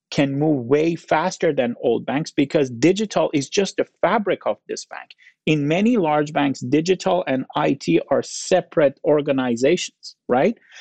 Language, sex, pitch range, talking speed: English, male, 130-185 Hz, 150 wpm